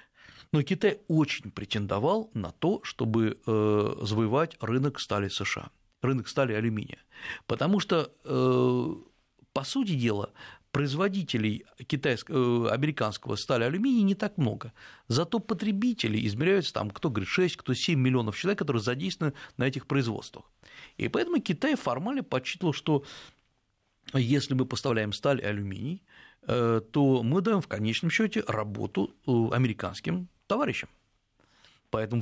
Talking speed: 120 wpm